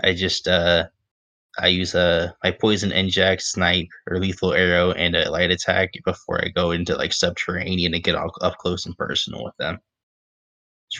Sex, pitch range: male, 90-100 Hz